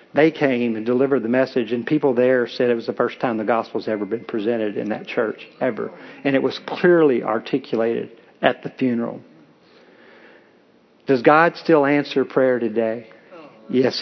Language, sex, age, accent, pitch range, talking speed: English, male, 50-69, American, 130-165 Hz, 165 wpm